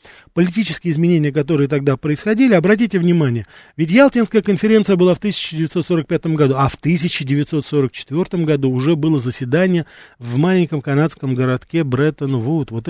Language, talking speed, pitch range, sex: Russian, 125 wpm, 135-180 Hz, male